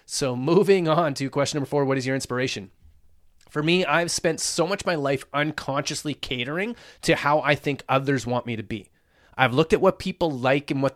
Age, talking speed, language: 30-49, 215 wpm, English